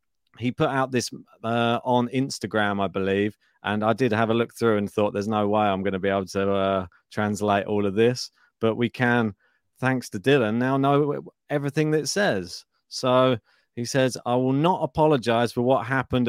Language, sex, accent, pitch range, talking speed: English, male, British, 110-130 Hz, 200 wpm